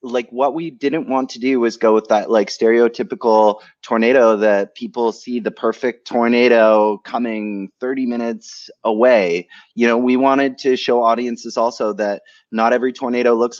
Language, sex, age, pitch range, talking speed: English, male, 30-49, 100-120 Hz, 165 wpm